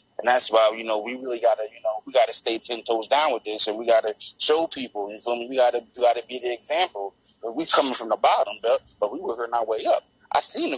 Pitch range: 115-155 Hz